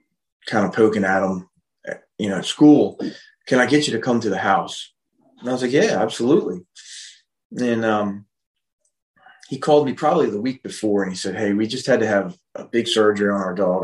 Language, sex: English, male